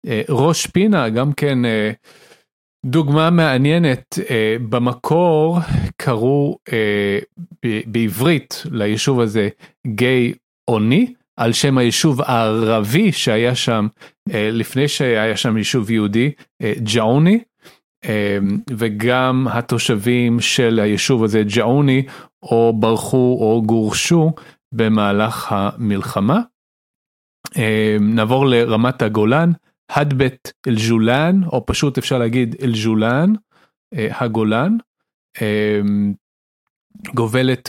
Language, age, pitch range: Hebrew, 40-59, 110-145 Hz